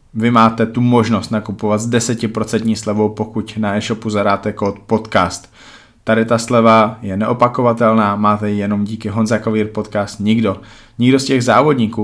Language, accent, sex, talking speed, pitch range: Czech, native, male, 155 wpm, 105-110 Hz